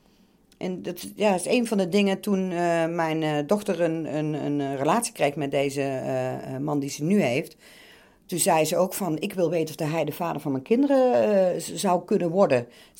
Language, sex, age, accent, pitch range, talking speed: Dutch, female, 50-69, Dutch, 150-210 Hz, 210 wpm